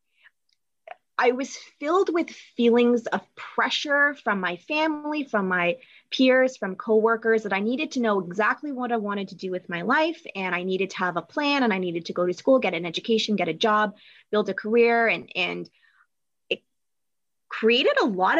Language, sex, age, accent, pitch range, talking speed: English, female, 20-39, American, 185-240 Hz, 190 wpm